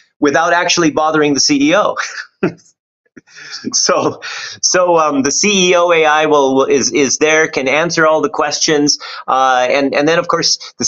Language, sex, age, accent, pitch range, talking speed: English, male, 30-49, American, 125-170 Hz, 150 wpm